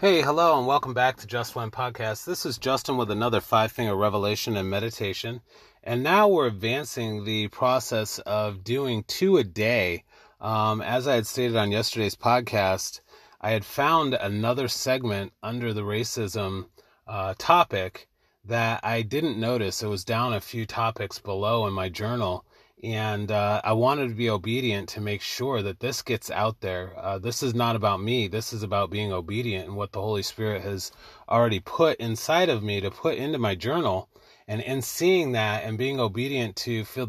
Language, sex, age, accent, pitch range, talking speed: English, male, 30-49, American, 105-125 Hz, 180 wpm